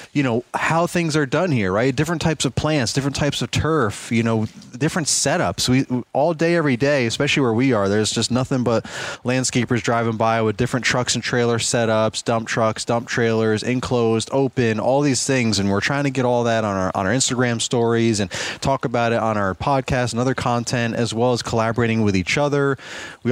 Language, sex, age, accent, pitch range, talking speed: English, male, 20-39, American, 115-135 Hz, 210 wpm